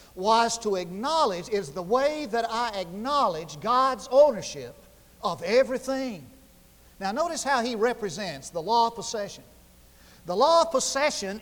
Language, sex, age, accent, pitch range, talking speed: English, male, 50-69, American, 175-270 Hz, 135 wpm